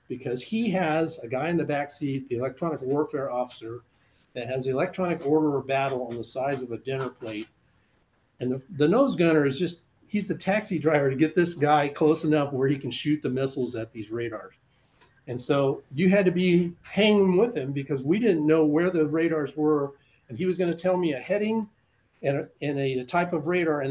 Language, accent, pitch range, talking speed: English, American, 130-175 Hz, 220 wpm